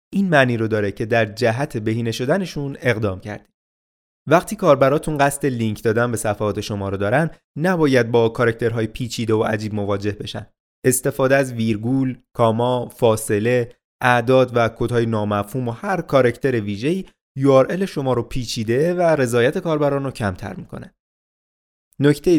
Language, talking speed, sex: Persian, 145 wpm, male